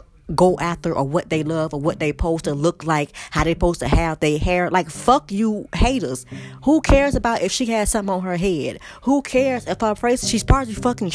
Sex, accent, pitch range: female, American, 165-220 Hz